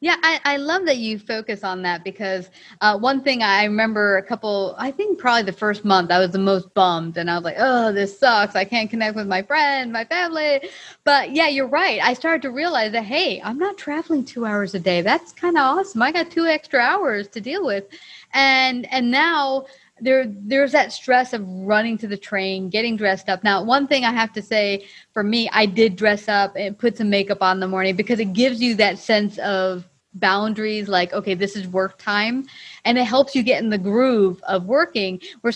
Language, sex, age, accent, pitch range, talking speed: English, female, 30-49, American, 200-275 Hz, 225 wpm